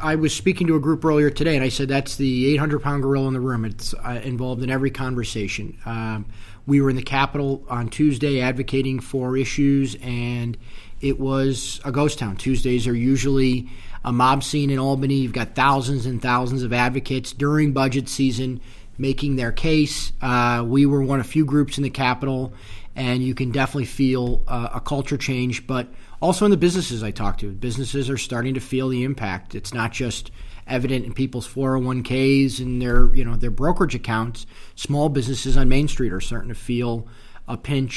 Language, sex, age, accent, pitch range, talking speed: English, male, 30-49, American, 120-135 Hz, 195 wpm